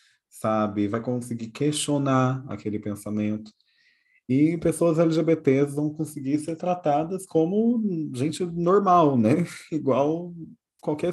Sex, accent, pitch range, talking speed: male, Brazilian, 110-150 Hz, 100 wpm